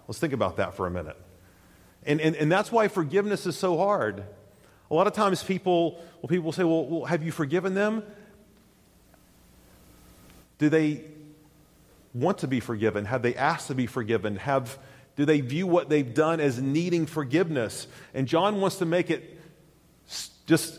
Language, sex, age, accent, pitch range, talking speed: English, male, 40-59, American, 120-170 Hz, 170 wpm